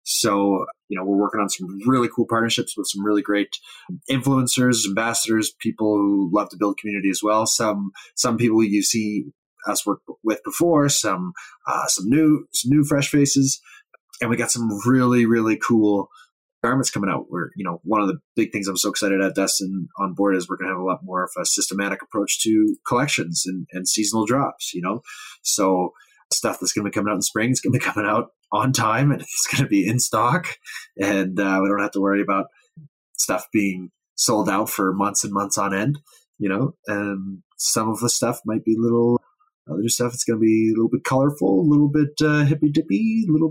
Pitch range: 100-140 Hz